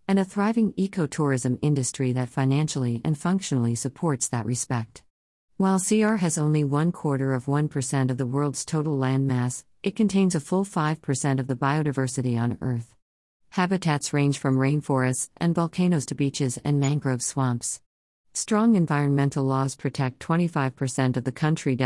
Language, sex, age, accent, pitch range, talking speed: English, female, 50-69, American, 130-155 Hz, 160 wpm